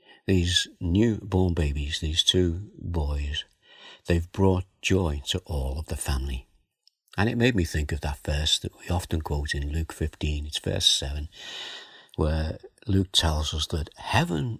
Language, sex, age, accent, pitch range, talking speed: English, male, 60-79, British, 75-95 Hz, 155 wpm